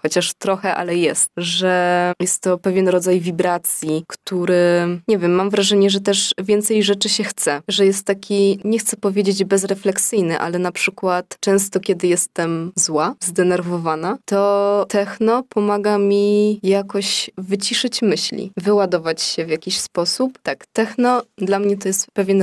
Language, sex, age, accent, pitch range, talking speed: Polish, female, 20-39, native, 175-205 Hz, 145 wpm